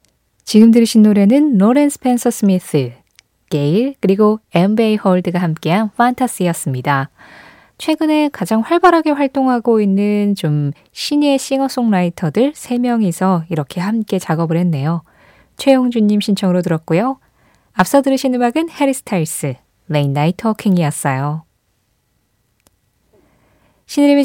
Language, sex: Korean, female